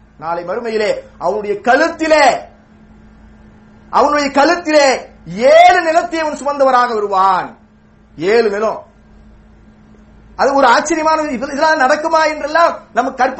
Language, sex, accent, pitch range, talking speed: English, male, Indian, 185-280 Hz, 85 wpm